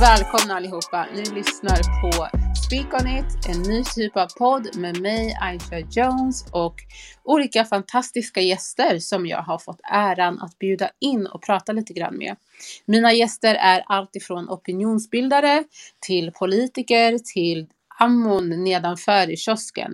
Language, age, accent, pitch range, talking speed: Swedish, 30-49, native, 180-245 Hz, 140 wpm